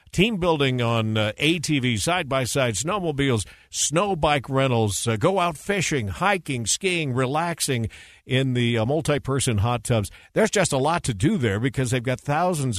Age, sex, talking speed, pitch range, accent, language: 50-69, male, 160 wpm, 110-145 Hz, American, English